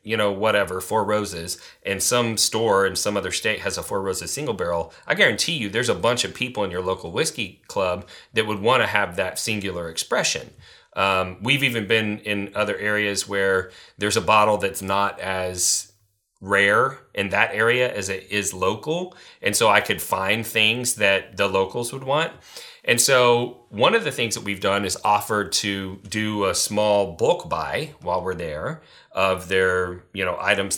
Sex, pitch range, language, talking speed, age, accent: male, 100-125 Hz, English, 190 wpm, 30-49, American